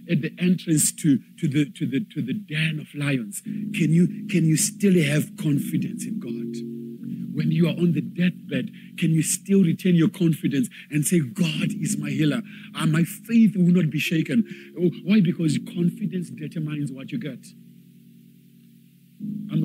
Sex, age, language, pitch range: male, 50-69, English, 155-220 Hz